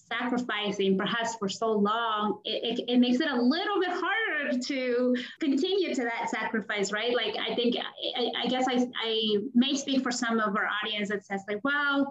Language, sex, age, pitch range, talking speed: English, female, 20-39, 195-245 Hz, 195 wpm